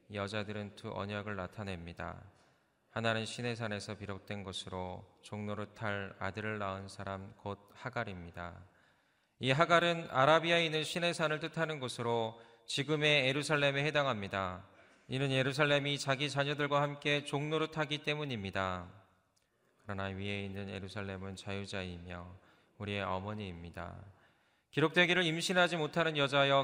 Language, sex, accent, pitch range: Korean, male, native, 95-145 Hz